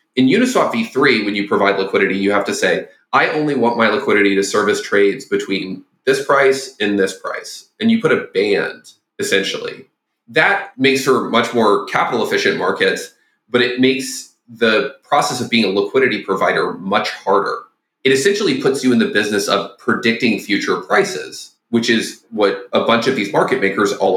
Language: English